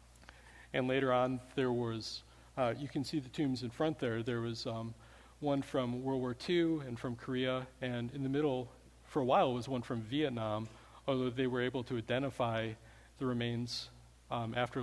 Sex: male